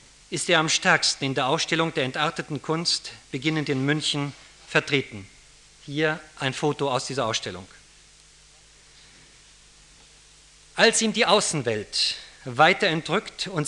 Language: Spanish